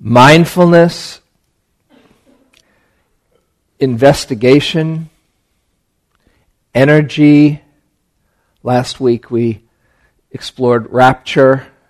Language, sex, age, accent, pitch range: English, male, 50-69, American, 115-135 Hz